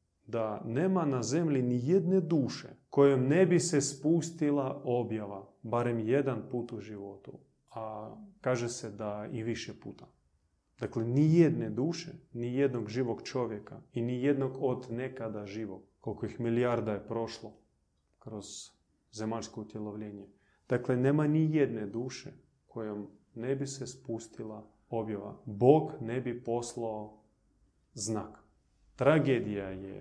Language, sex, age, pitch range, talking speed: Croatian, male, 30-49, 110-140 Hz, 130 wpm